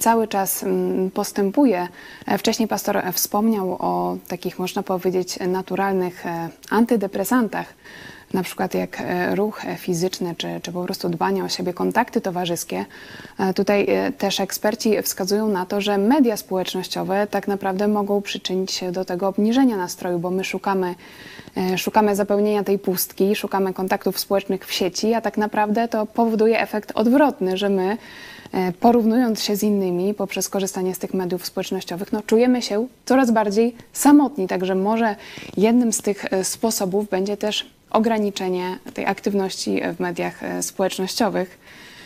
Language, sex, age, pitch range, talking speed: Polish, female, 20-39, 185-215 Hz, 135 wpm